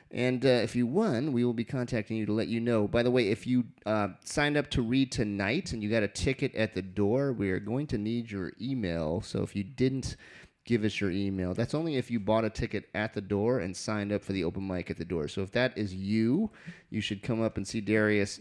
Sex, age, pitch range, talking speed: male, 30-49, 105-140 Hz, 260 wpm